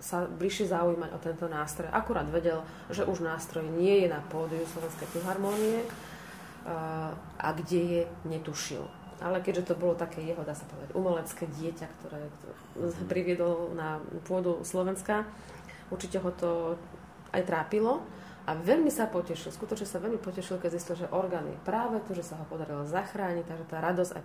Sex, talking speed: female, 160 wpm